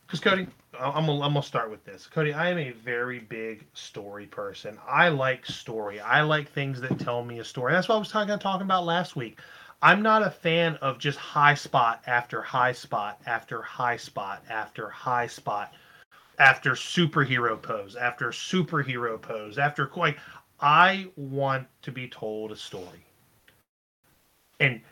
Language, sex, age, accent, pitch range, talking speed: English, male, 30-49, American, 125-165 Hz, 170 wpm